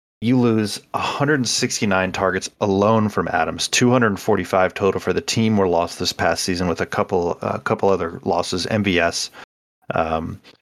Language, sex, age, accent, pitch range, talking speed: English, male, 30-49, American, 95-110 Hz, 155 wpm